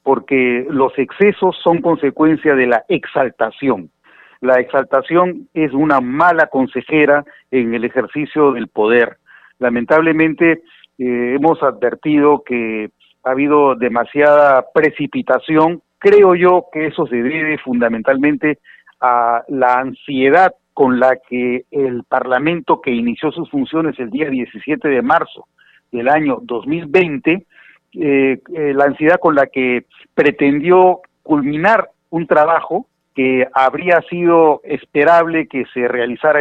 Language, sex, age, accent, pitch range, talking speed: Spanish, male, 50-69, Mexican, 130-165 Hz, 120 wpm